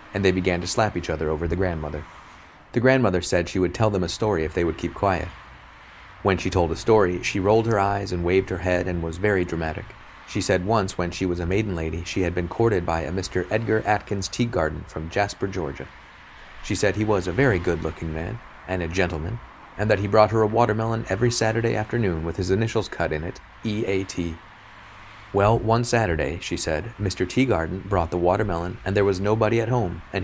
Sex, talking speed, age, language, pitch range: male, 215 wpm, 30-49, English, 85-105 Hz